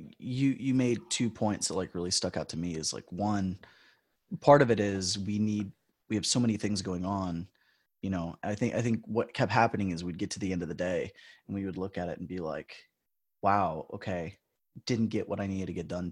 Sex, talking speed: male, 240 wpm